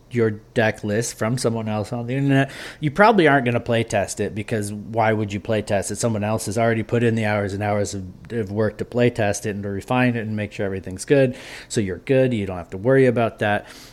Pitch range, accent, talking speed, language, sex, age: 105-140 Hz, American, 260 wpm, English, male, 30-49